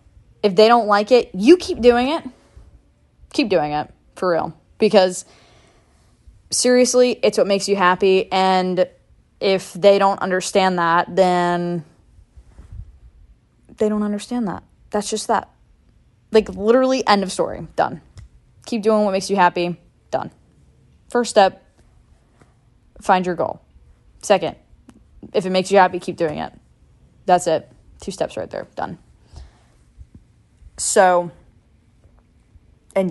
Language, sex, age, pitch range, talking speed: English, female, 20-39, 180-225 Hz, 130 wpm